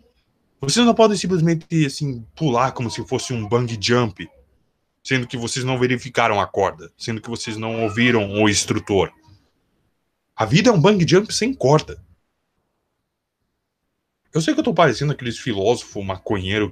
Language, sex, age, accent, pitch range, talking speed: Portuguese, male, 20-39, Brazilian, 100-135 Hz, 155 wpm